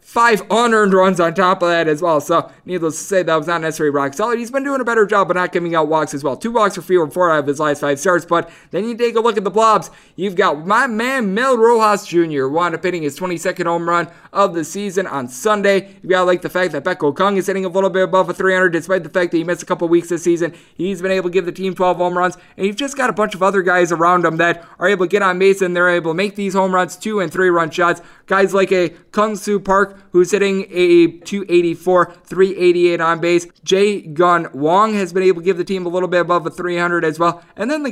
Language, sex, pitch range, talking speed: English, male, 170-205 Hz, 275 wpm